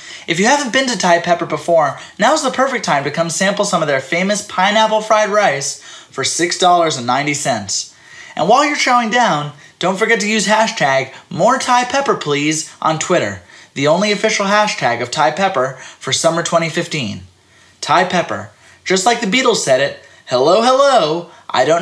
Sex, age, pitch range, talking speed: male, 20-39, 130-200 Hz, 160 wpm